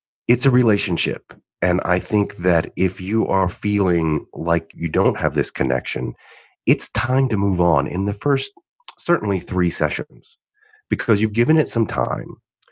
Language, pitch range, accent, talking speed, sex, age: English, 90-130 Hz, American, 160 wpm, male, 30-49